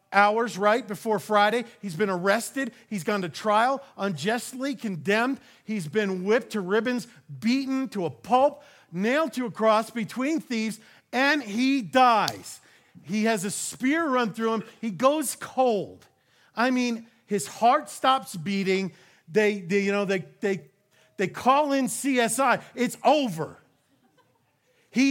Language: English